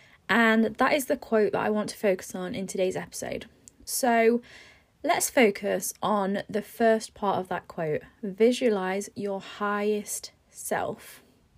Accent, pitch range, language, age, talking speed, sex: British, 205-255 Hz, English, 20-39, 145 wpm, female